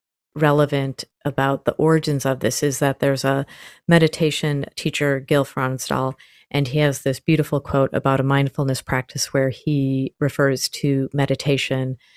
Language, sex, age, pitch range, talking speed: English, female, 30-49, 135-145 Hz, 145 wpm